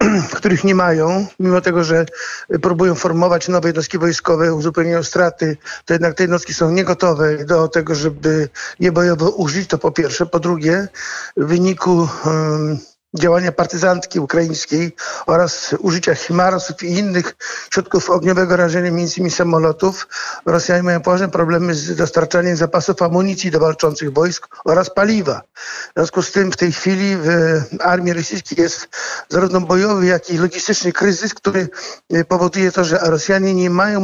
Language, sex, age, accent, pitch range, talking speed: Polish, male, 50-69, native, 170-185 Hz, 145 wpm